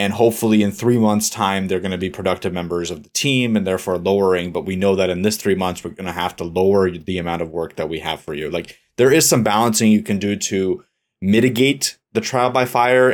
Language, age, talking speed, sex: English, 30-49, 250 wpm, male